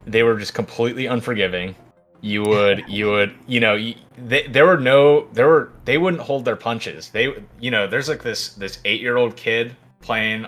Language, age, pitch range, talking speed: English, 30-49, 100-125 Hz, 190 wpm